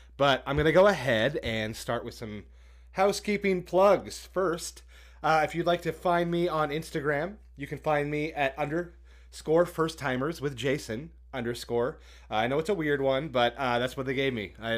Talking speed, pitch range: 195 wpm, 115-155 Hz